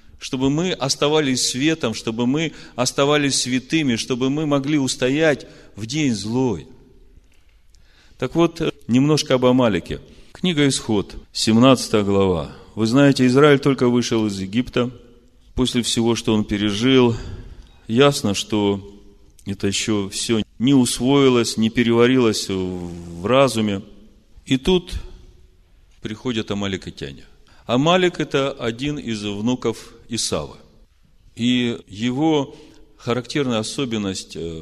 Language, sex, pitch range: Russian, male, 100-130 Hz